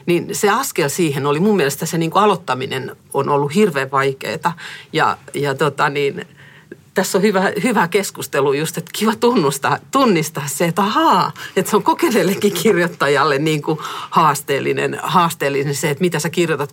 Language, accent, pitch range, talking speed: Finnish, native, 145-180 Hz, 160 wpm